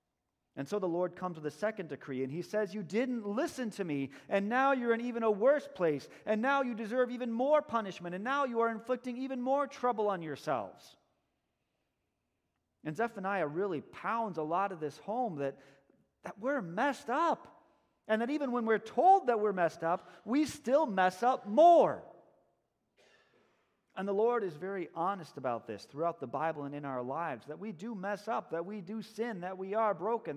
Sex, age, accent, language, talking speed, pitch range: male, 40-59, American, English, 195 wpm, 145-225 Hz